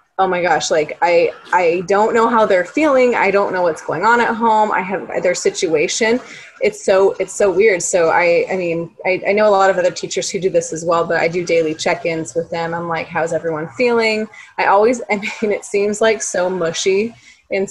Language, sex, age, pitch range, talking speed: English, female, 20-39, 175-225 Hz, 225 wpm